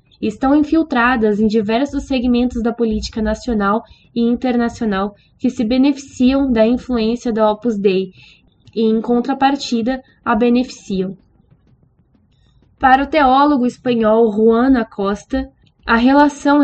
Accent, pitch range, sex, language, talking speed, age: Brazilian, 225-265 Hz, female, Portuguese, 110 wpm, 10-29